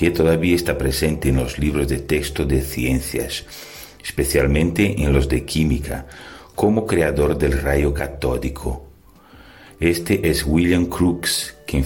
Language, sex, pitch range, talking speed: Portuguese, male, 70-85 Hz, 130 wpm